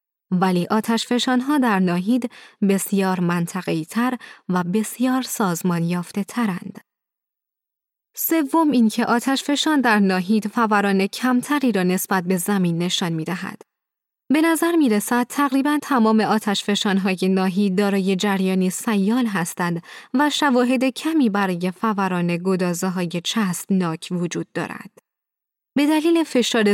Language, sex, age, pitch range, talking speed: Persian, female, 20-39, 185-245 Hz, 115 wpm